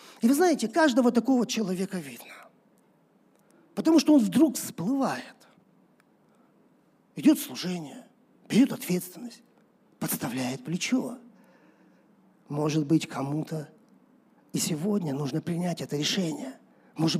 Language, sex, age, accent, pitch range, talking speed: Russian, male, 40-59, native, 175-245 Hz, 100 wpm